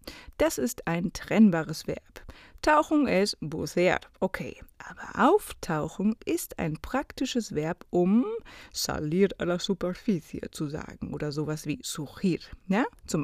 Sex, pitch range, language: female, 165-240 Hz, Spanish